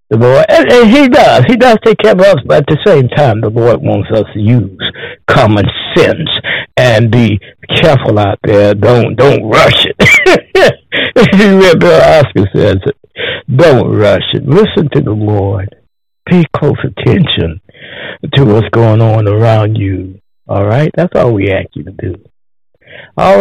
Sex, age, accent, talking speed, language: male, 60-79, American, 155 wpm, English